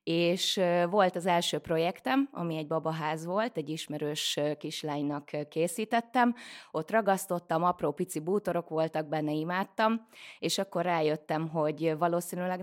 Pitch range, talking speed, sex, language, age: 150-175 Hz, 125 wpm, female, Hungarian, 20-39